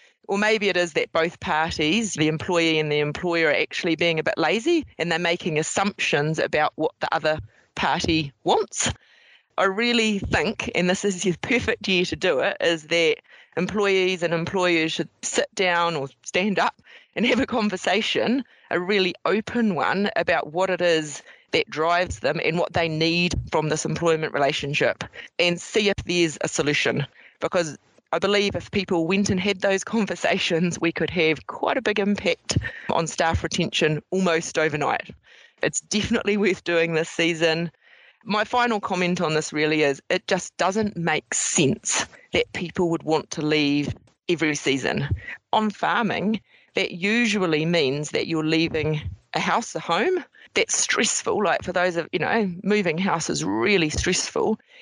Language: English